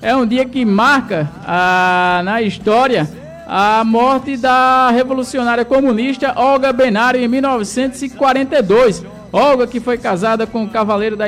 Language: Portuguese